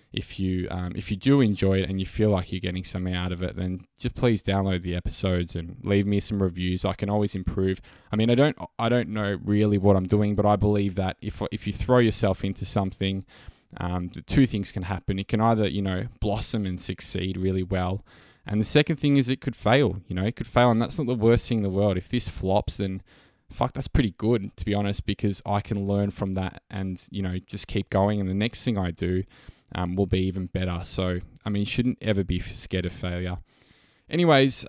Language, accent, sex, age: English, Australian, male, 20-39